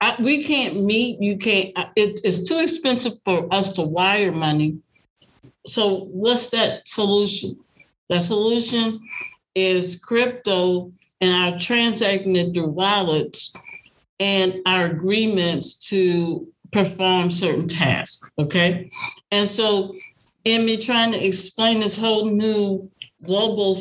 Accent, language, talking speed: American, English, 120 wpm